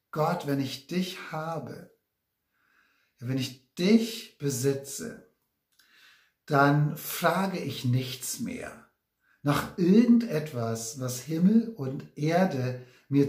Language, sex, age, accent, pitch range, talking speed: German, male, 60-79, German, 130-180 Hz, 95 wpm